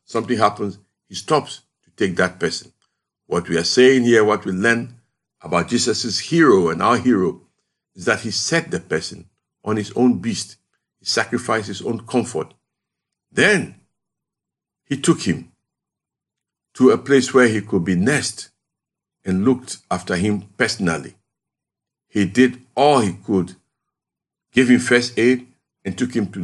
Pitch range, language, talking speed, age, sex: 100-125 Hz, English, 150 wpm, 60-79, male